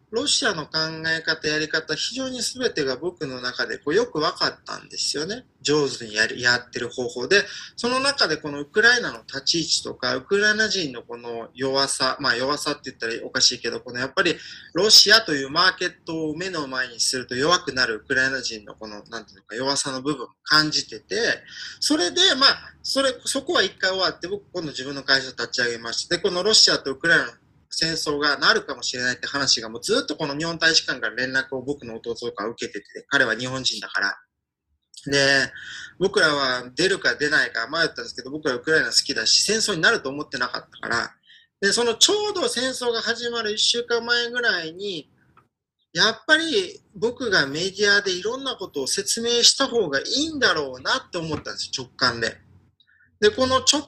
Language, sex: Japanese, male